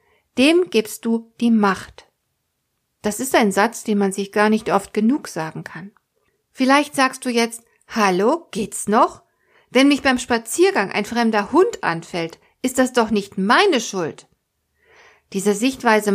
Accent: German